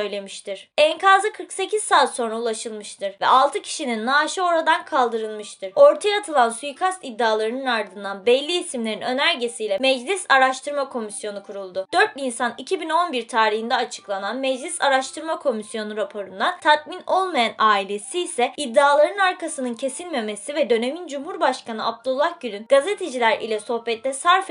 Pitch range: 230-320 Hz